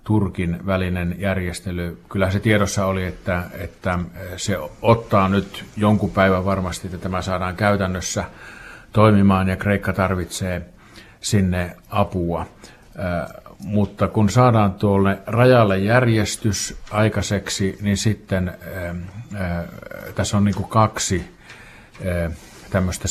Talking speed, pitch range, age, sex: 110 wpm, 90-100 Hz, 50-69, male